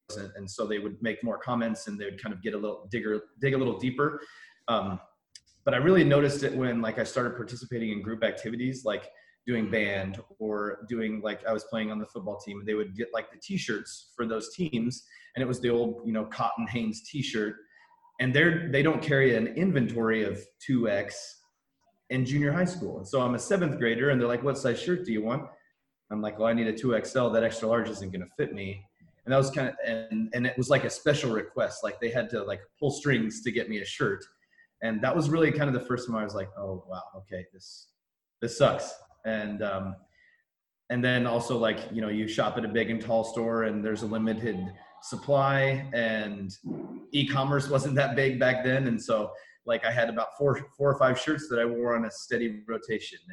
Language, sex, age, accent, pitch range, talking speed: English, male, 30-49, American, 110-135 Hz, 220 wpm